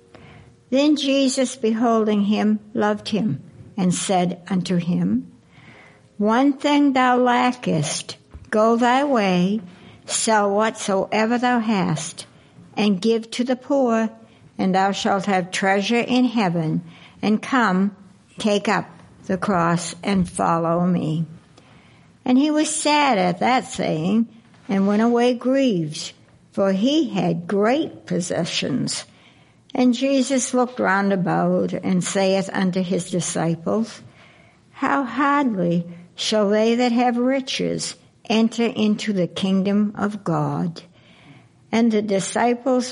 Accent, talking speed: American, 115 wpm